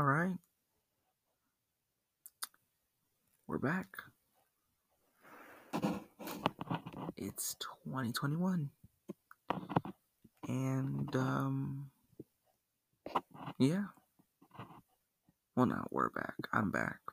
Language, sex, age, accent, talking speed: English, male, 30-49, American, 55 wpm